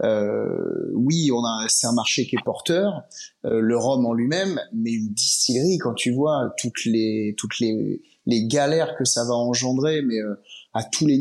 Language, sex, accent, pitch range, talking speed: French, male, French, 125-180 Hz, 195 wpm